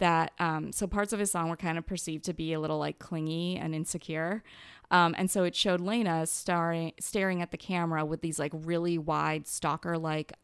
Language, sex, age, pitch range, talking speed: English, female, 30-49, 160-185 Hz, 215 wpm